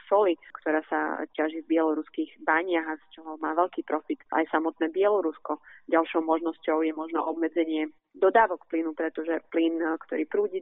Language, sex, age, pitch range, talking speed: Slovak, female, 30-49, 160-180 Hz, 145 wpm